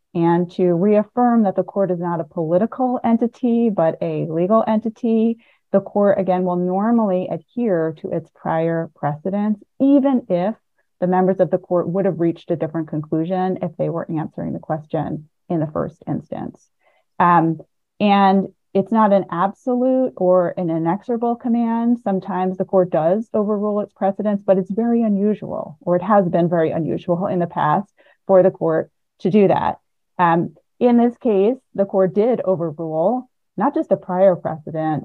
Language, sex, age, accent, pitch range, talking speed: English, female, 30-49, American, 170-210 Hz, 165 wpm